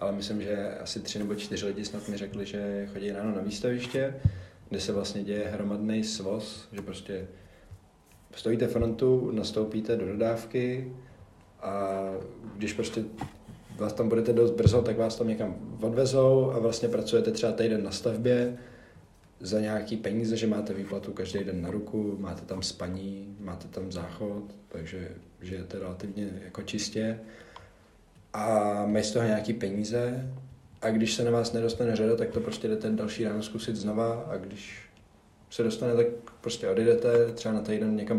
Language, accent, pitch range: Czech, native, 100-115 Hz